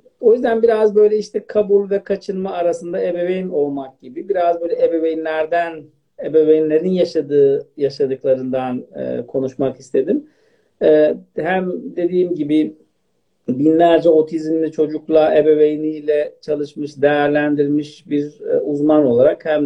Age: 50-69